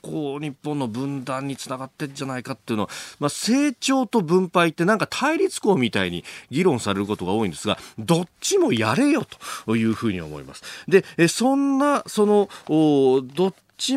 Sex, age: male, 40-59